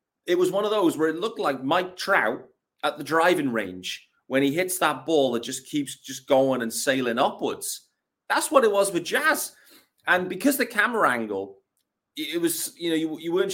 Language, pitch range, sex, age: English, 110-155 Hz, male, 30-49